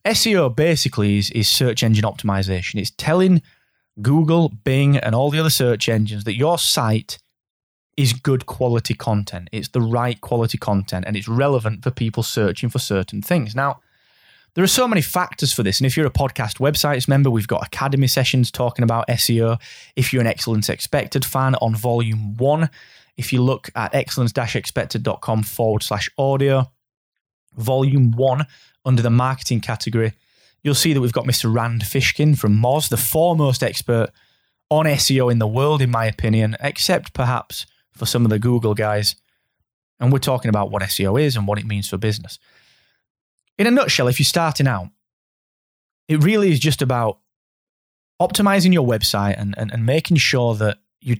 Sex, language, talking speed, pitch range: male, English, 170 wpm, 110-140 Hz